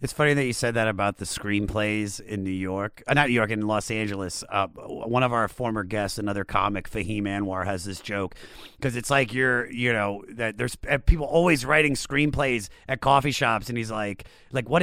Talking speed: 210 wpm